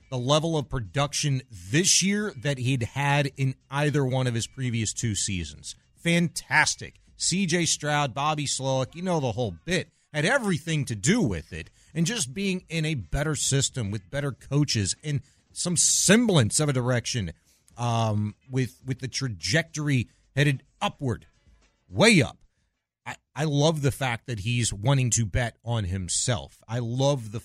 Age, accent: 40-59, American